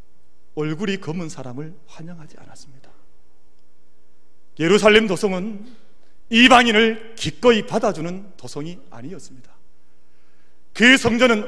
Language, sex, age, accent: Korean, male, 40-59, native